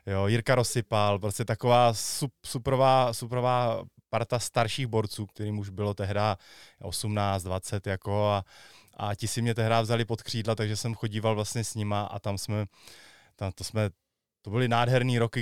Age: 20-39